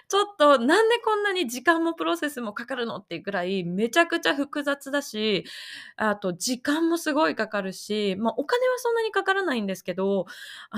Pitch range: 185-295 Hz